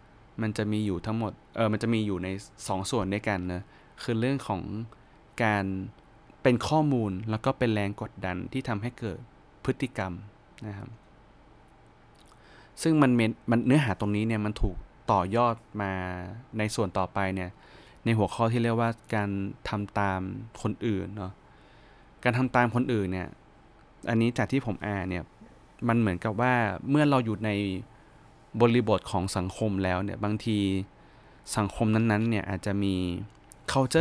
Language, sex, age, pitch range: Thai, male, 20-39, 95-115 Hz